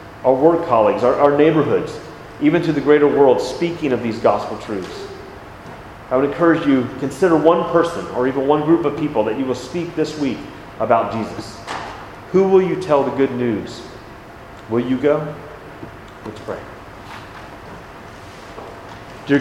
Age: 30-49